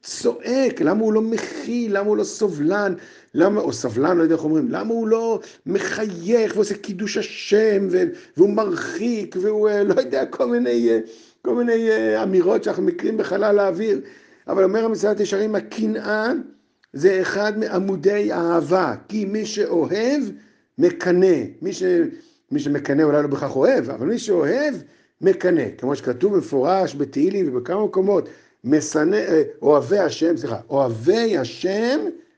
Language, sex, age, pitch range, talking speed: Hebrew, male, 50-69, 160-240 Hz, 135 wpm